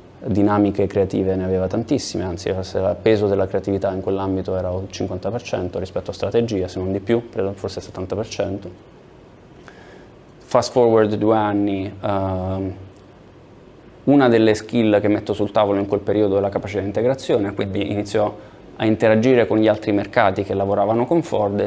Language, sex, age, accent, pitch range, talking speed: Italian, male, 20-39, native, 100-110 Hz, 160 wpm